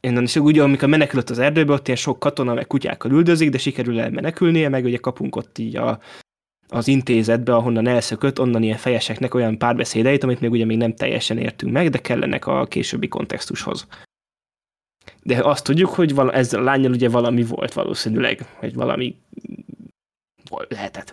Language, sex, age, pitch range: Hungarian, male, 20-39, 120-140 Hz